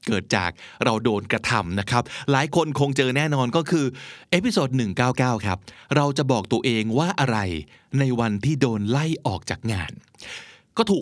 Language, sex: Thai, male